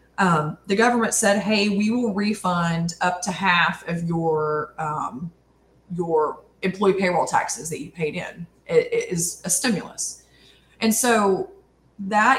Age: 20-39